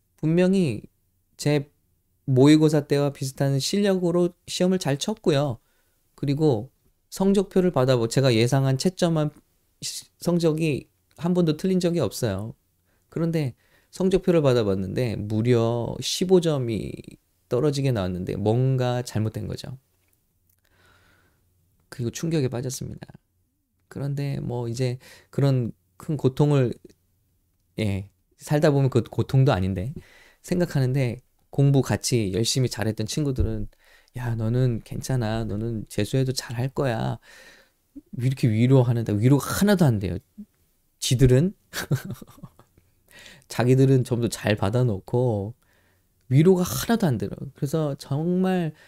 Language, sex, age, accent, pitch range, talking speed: English, male, 20-39, Korean, 105-150 Hz, 90 wpm